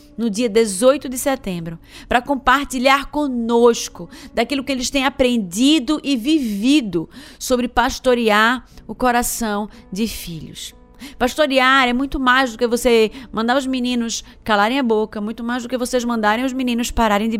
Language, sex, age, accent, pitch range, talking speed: Portuguese, female, 20-39, Brazilian, 200-250 Hz, 150 wpm